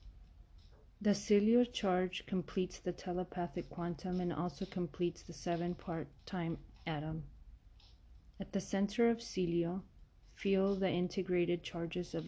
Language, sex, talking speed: English, female, 120 wpm